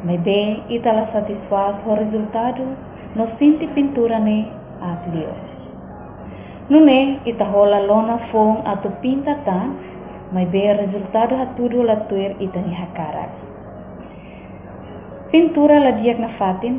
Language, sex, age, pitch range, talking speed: Indonesian, female, 20-39, 195-245 Hz, 95 wpm